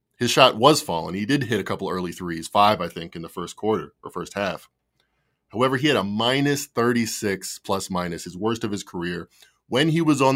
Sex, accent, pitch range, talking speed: male, American, 95-120 Hz, 220 wpm